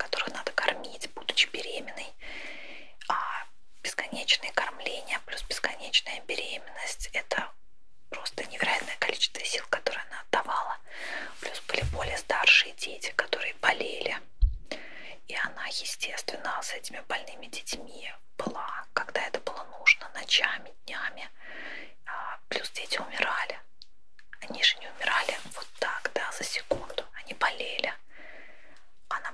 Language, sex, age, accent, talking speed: Russian, female, 20-39, native, 115 wpm